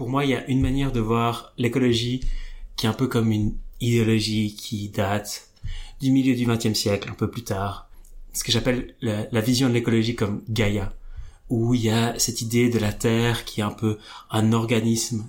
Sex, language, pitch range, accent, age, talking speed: male, French, 105-120 Hz, French, 30-49, 205 wpm